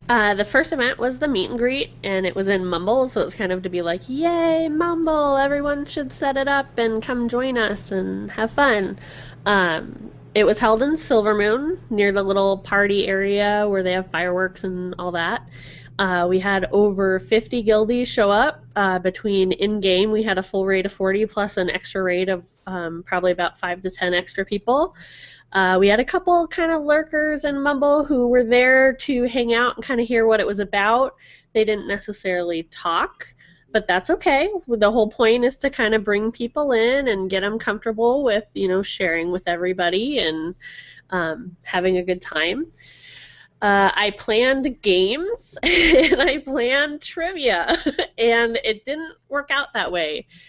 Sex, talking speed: female, 185 wpm